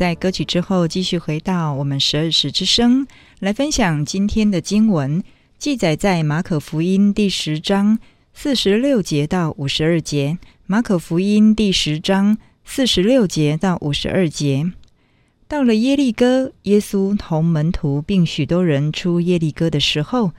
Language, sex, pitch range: Chinese, female, 160-220 Hz